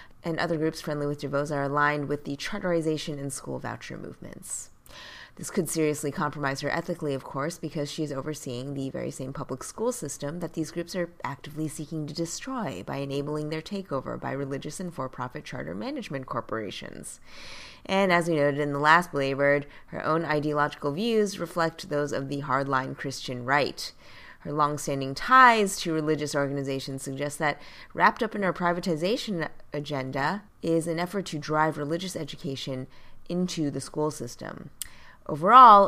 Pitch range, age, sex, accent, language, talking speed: 140-170 Hz, 20-39, female, American, English, 160 wpm